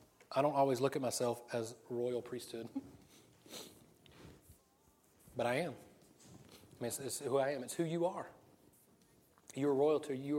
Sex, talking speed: male, 155 wpm